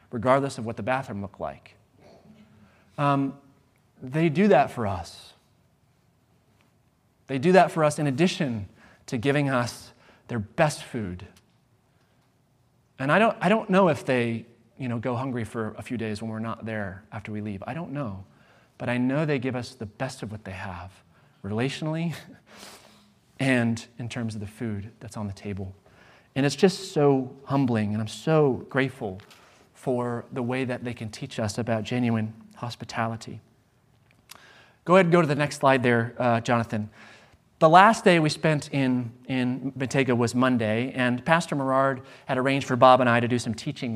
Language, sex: English, male